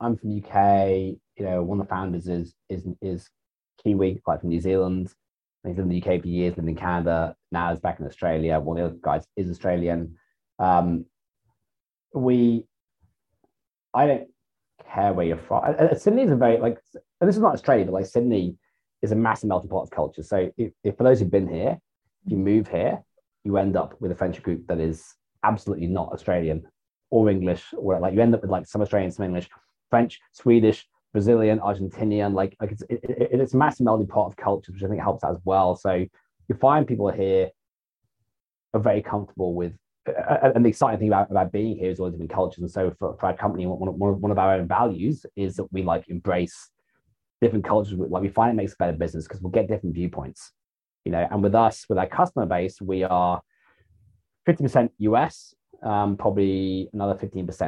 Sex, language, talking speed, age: male, English, 205 wpm, 20-39